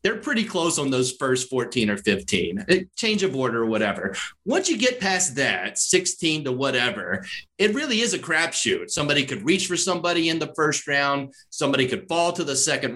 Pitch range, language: 135-190 Hz, English